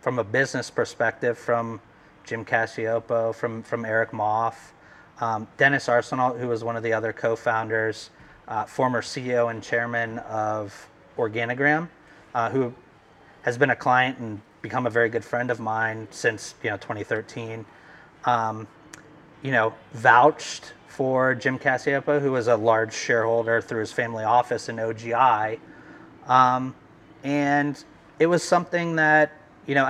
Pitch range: 115-140 Hz